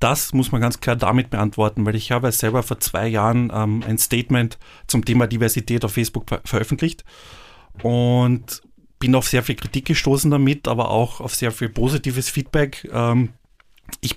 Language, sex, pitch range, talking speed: German, male, 115-135 Hz, 170 wpm